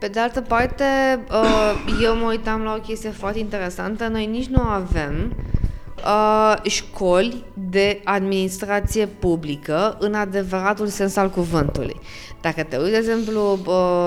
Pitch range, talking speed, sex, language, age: 185-225 Hz, 135 wpm, female, Romanian, 20-39